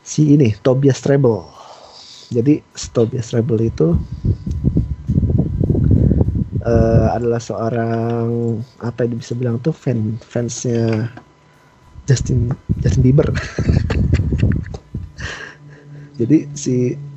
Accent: native